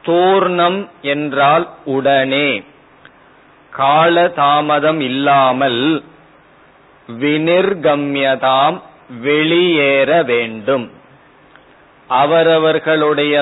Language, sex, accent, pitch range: Tamil, male, native, 140-165 Hz